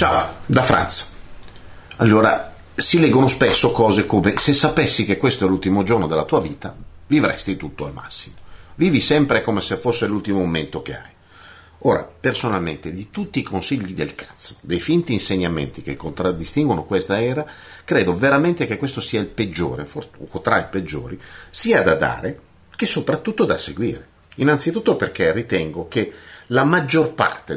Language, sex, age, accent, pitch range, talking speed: Italian, male, 50-69, native, 90-135 Hz, 155 wpm